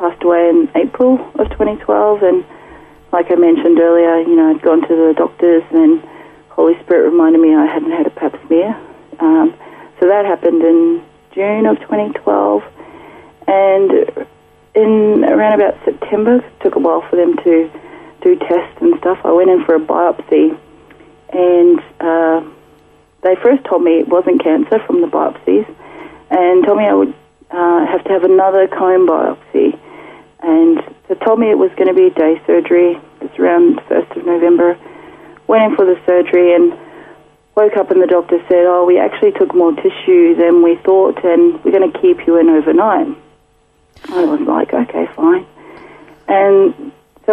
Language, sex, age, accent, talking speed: English, female, 30-49, Australian, 170 wpm